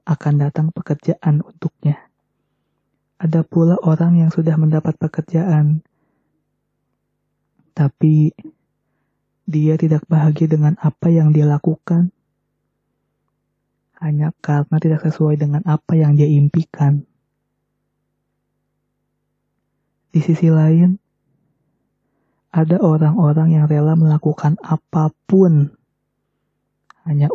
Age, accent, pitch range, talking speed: 20-39, native, 150-165 Hz, 85 wpm